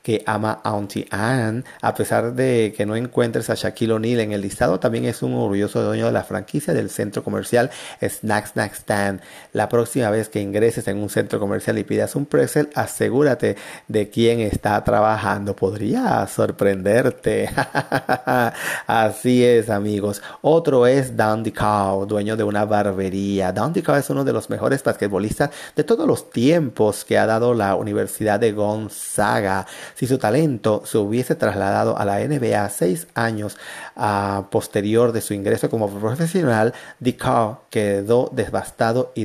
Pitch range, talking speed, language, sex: 105-120 Hz, 155 wpm, Spanish, male